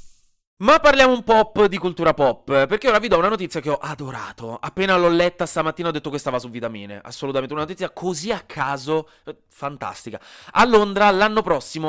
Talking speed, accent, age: 190 wpm, native, 20-39